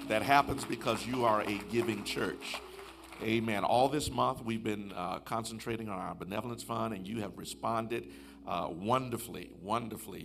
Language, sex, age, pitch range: English, male, 50-69, 95-120 Hz